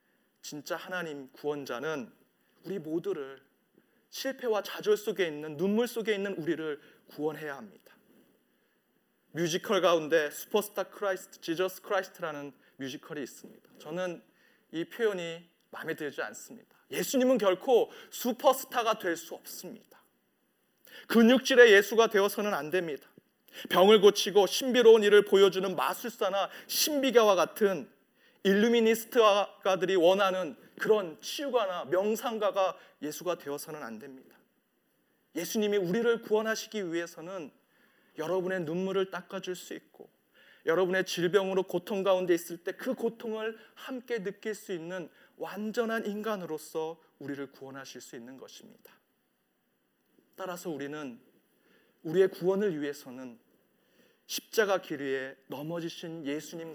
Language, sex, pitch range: Korean, male, 165-220 Hz